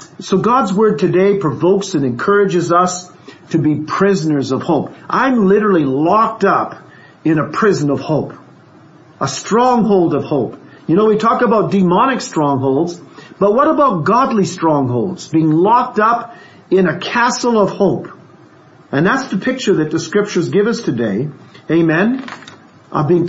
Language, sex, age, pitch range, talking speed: English, male, 50-69, 155-200 Hz, 150 wpm